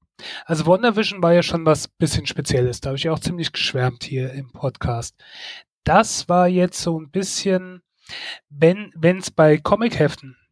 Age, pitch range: 30-49, 145-175 Hz